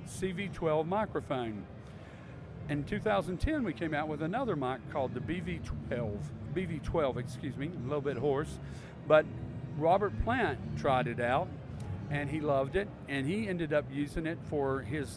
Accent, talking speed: American, 160 wpm